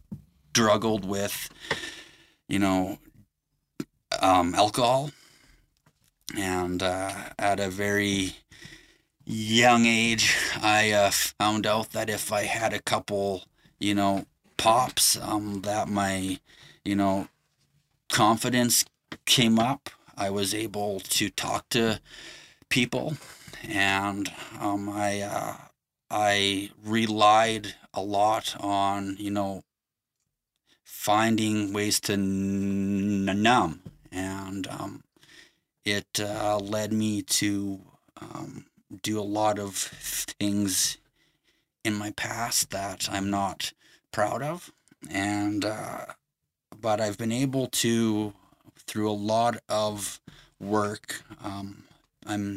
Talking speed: 105 wpm